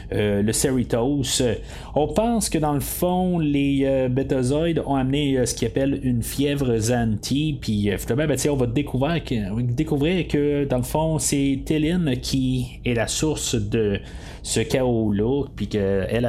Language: French